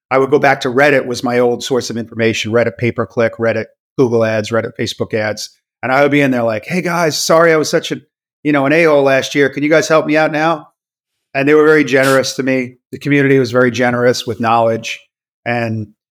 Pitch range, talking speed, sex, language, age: 120-155 Hz, 235 wpm, male, English, 40-59